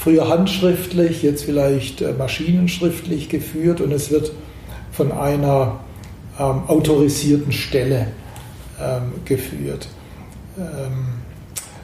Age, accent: 60-79, German